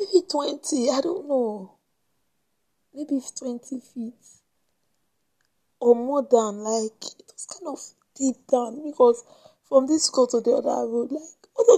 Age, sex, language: 20-39, female, English